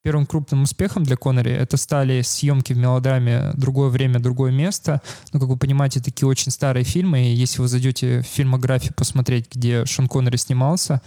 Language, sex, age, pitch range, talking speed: Russian, male, 20-39, 130-150 Hz, 180 wpm